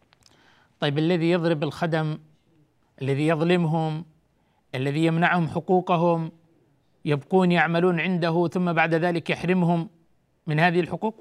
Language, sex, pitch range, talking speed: Arabic, male, 170-220 Hz, 100 wpm